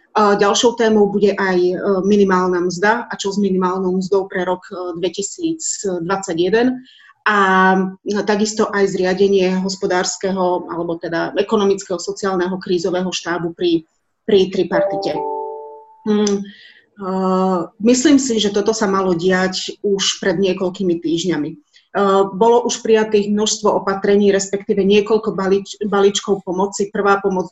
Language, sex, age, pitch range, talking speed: Slovak, female, 30-49, 185-210 Hz, 120 wpm